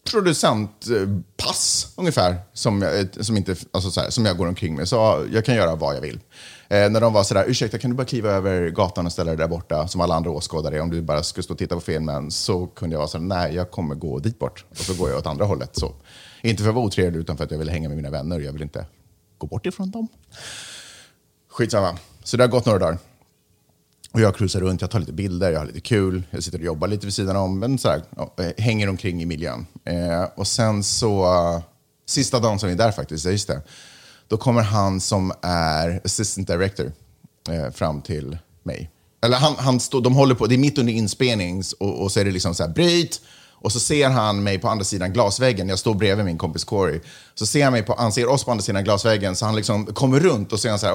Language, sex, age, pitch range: Swedish, male, 30-49, 85-115 Hz